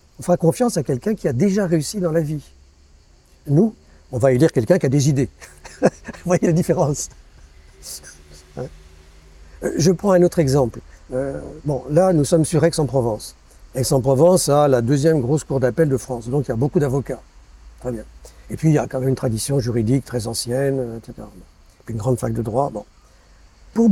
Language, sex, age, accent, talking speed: French, male, 50-69, French, 195 wpm